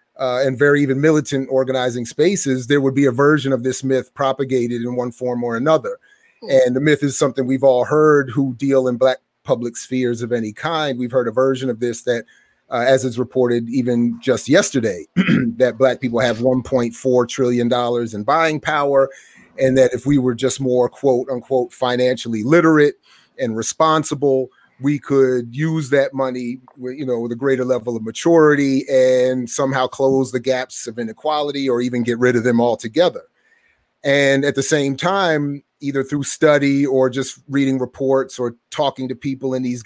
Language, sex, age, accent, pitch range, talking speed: English, male, 30-49, American, 125-145 Hz, 175 wpm